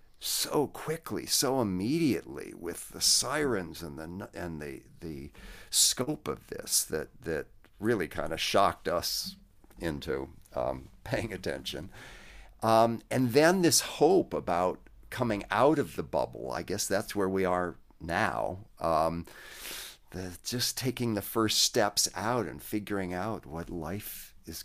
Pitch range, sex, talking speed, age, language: 80-110 Hz, male, 140 wpm, 50-69, English